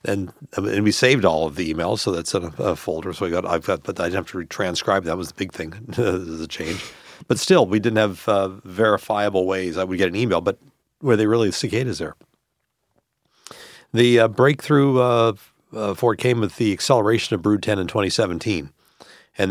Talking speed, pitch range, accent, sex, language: 210 wpm, 95-115 Hz, American, male, English